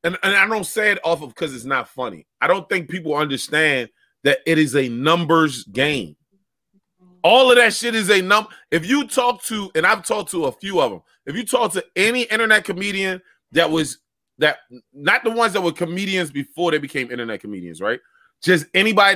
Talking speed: 205 wpm